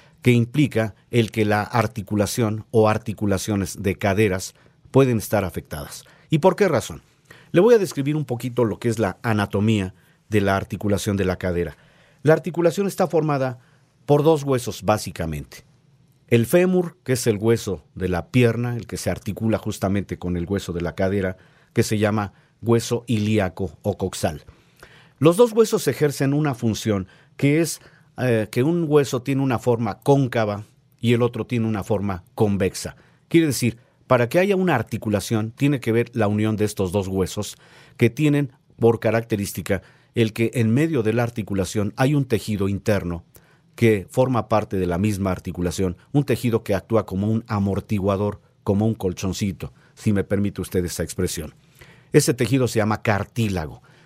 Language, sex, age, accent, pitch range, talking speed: Spanish, male, 50-69, Mexican, 100-135 Hz, 170 wpm